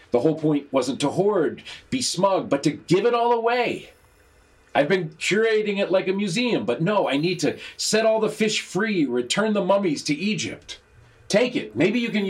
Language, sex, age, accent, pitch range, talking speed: English, male, 40-59, American, 135-205 Hz, 200 wpm